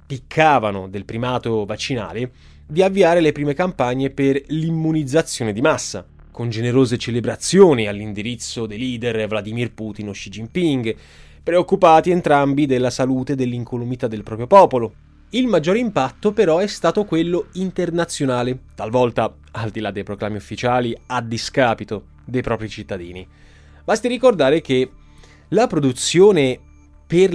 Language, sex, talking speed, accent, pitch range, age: Italian, male, 130 wpm, native, 105-140 Hz, 20-39